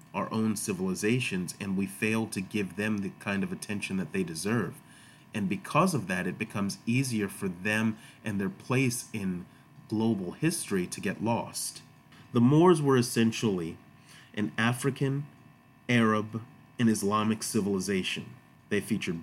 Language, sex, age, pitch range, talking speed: English, male, 30-49, 100-125 Hz, 145 wpm